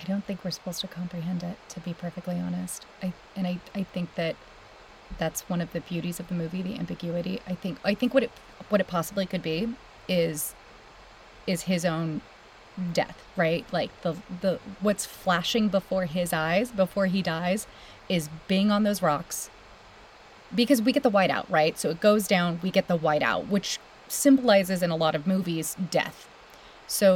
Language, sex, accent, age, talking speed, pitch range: English, female, American, 30-49, 185 wpm, 175-195 Hz